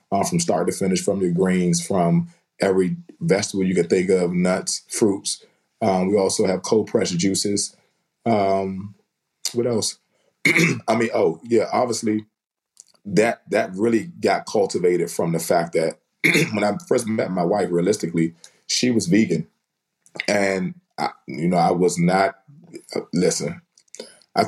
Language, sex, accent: English, male, American